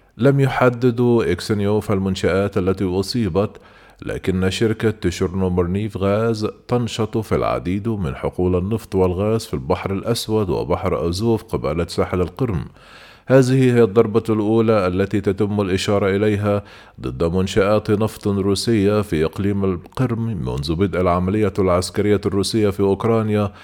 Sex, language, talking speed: male, Arabic, 120 wpm